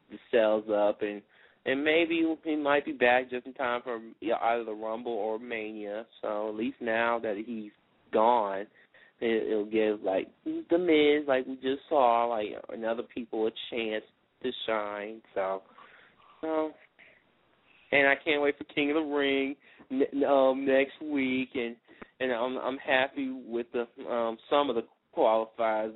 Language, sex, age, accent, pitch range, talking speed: English, male, 20-39, American, 110-140 Hz, 160 wpm